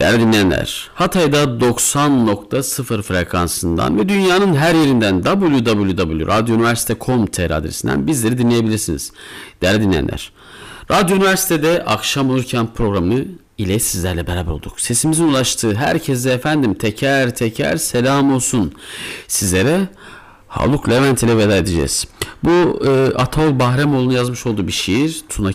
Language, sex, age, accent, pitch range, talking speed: Turkish, male, 50-69, native, 95-140 Hz, 110 wpm